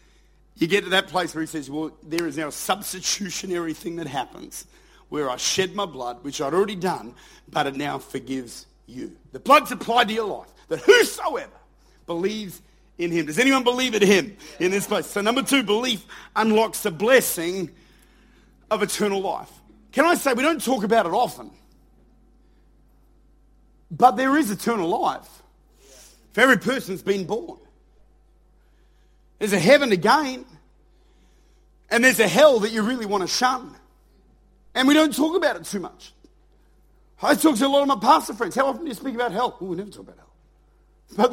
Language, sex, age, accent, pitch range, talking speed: English, male, 50-69, Australian, 185-255 Hz, 180 wpm